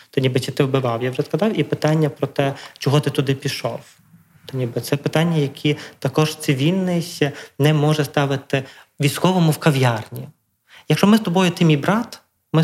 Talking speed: 175 wpm